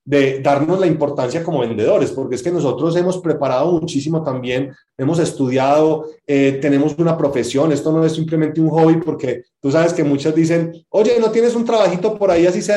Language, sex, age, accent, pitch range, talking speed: Spanish, male, 30-49, Colombian, 145-180 Hz, 195 wpm